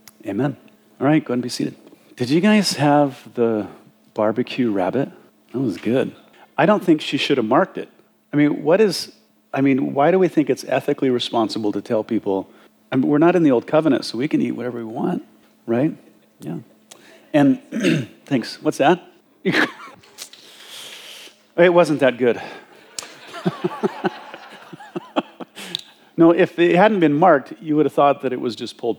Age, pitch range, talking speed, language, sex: 40-59, 105-155 Hz, 165 wpm, English, male